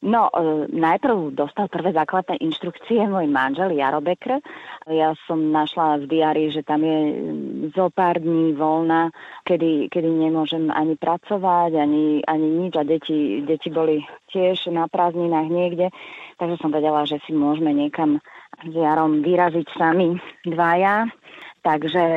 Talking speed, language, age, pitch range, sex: 140 wpm, Slovak, 30-49, 150-170 Hz, female